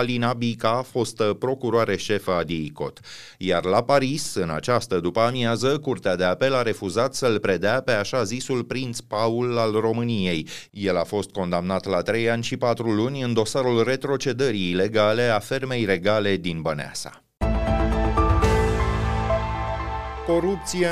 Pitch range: 110-150 Hz